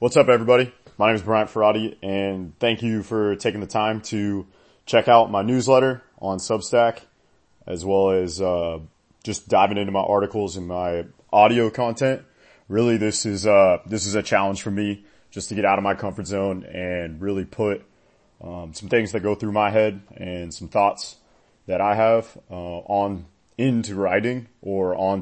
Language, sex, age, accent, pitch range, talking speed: English, male, 30-49, American, 90-110 Hz, 180 wpm